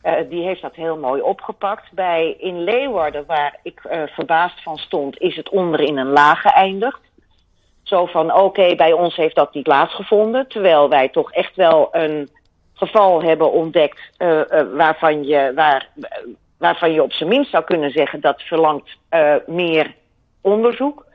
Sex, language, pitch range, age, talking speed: female, Dutch, 155-215 Hz, 40-59, 170 wpm